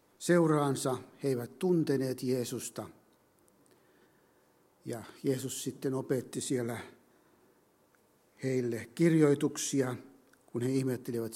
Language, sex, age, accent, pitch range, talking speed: Finnish, male, 60-79, native, 120-140 Hz, 75 wpm